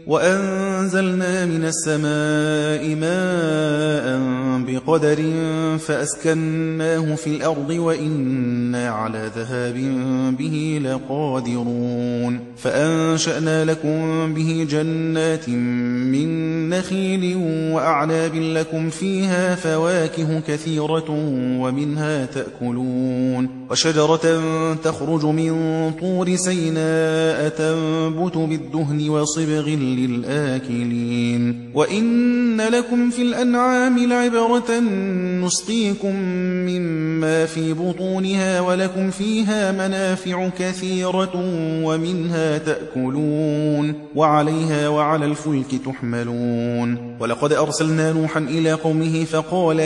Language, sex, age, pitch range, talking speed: Persian, male, 30-49, 150-170 Hz, 75 wpm